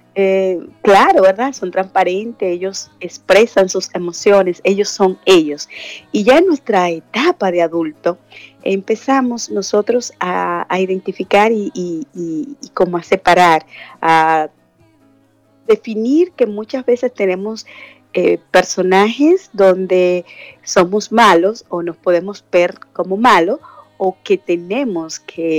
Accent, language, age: American, Spanish, 30-49